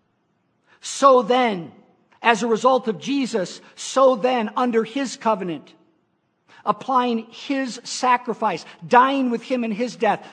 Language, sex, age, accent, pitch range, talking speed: English, male, 50-69, American, 185-245 Hz, 120 wpm